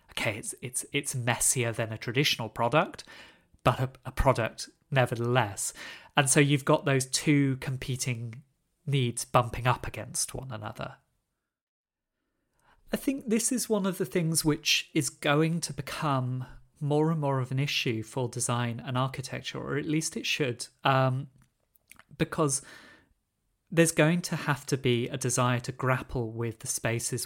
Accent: British